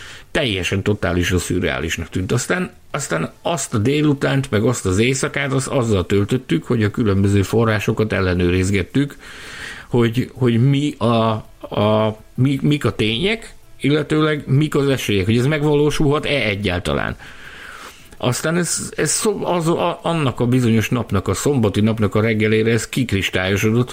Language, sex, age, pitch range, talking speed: Hungarian, male, 50-69, 95-130 Hz, 140 wpm